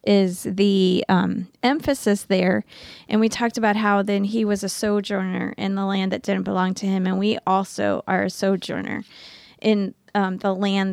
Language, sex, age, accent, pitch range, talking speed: English, female, 20-39, American, 190-220 Hz, 180 wpm